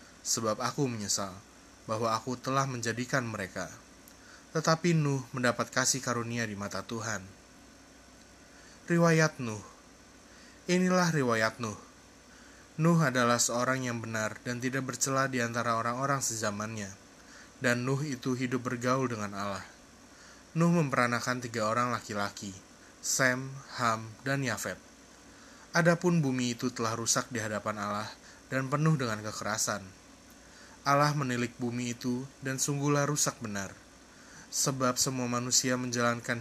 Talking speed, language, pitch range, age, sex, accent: 120 wpm, Indonesian, 110-135 Hz, 20-39, male, native